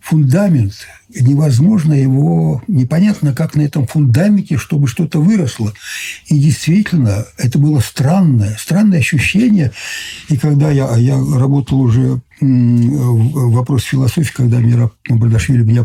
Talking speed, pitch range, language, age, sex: 115 wpm, 115-145 Hz, Russian, 60-79, male